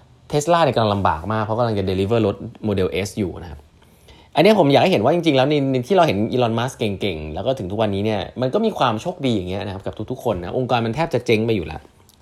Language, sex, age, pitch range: Thai, male, 20-39, 100-135 Hz